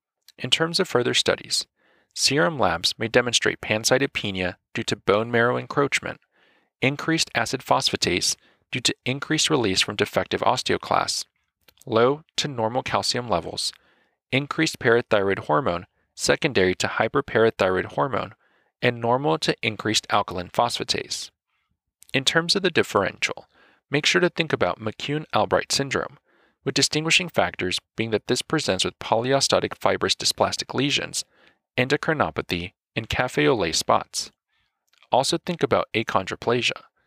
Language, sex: English, male